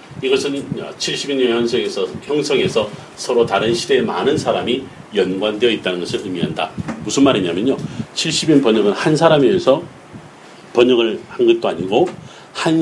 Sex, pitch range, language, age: male, 115-170 Hz, Korean, 40-59